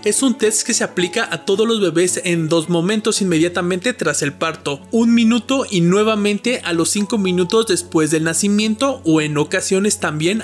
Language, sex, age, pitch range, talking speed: Spanish, male, 20-39, 160-210 Hz, 185 wpm